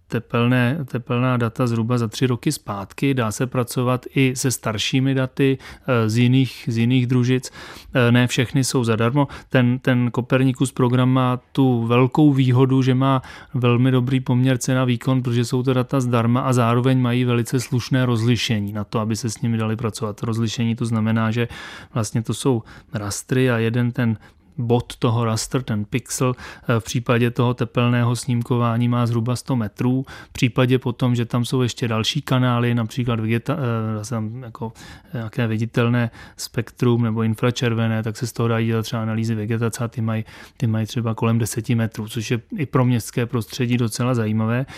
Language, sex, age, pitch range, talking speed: Czech, male, 30-49, 115-130 Hz, 165 wpm